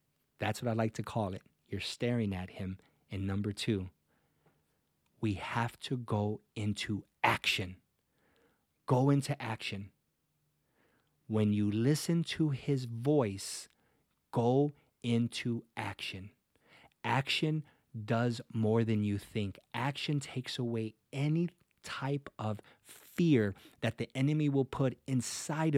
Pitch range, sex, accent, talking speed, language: 105-130 Hz, male, American, 120 wpm, English